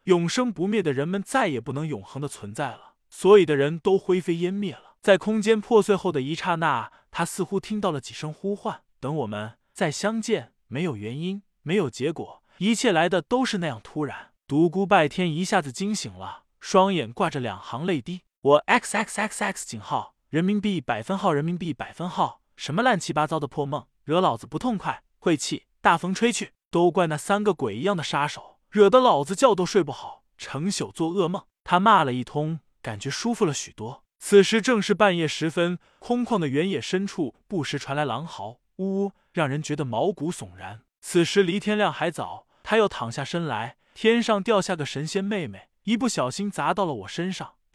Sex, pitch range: male, 145-205 Hz